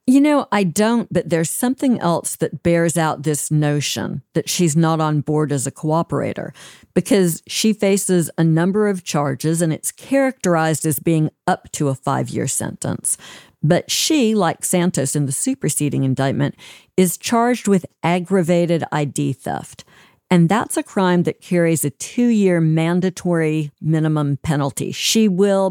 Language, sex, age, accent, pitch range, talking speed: English, female, 50-69, American, 155-195 Hz, 155 wpm